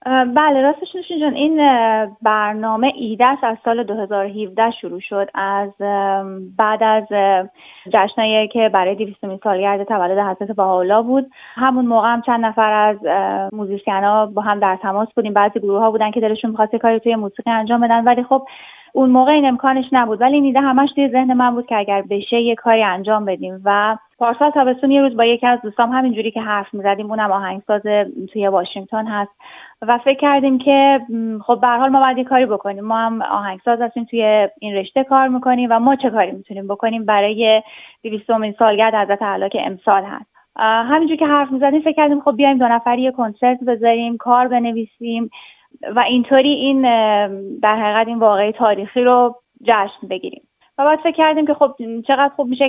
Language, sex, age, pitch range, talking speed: Persian, female, 30-49, 210-255 Hz, 175 wpm